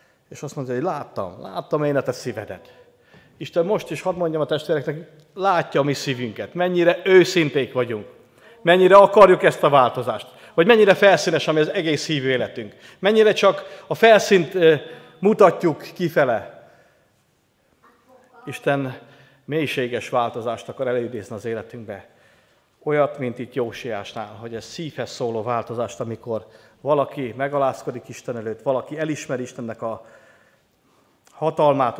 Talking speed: 130 wpm